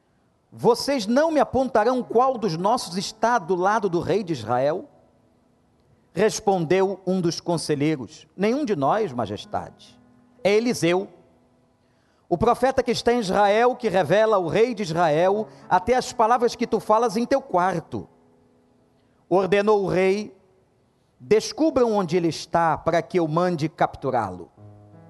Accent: Brazilian